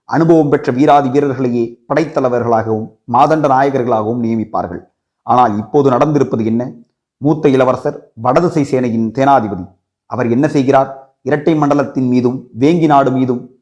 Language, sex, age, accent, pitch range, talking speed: Tamil, male, 30-49, native, 125-150 Hz, 115 wpm